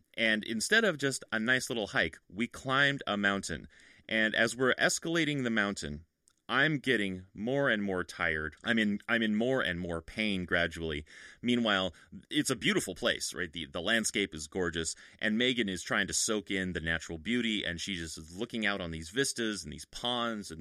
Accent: American